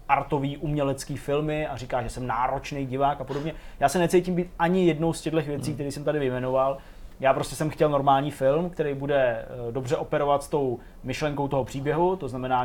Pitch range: 130-160 Hz